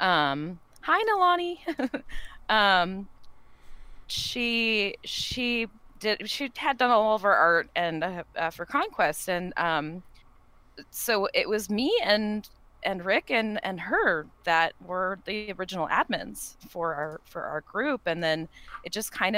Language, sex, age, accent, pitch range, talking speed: English, female, 20-39, American, 165-210 Hz, 140 wpm